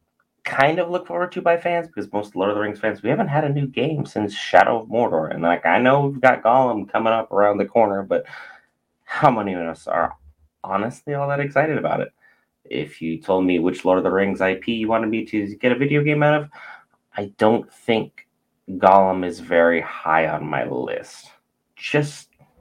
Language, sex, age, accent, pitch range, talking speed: English, male, 30-49, American, 90-140 Hz, 210 wpm